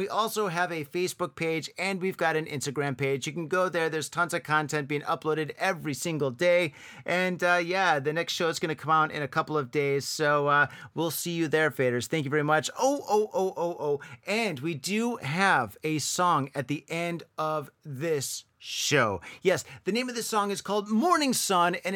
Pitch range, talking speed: 145-190 Hz, 220 wpm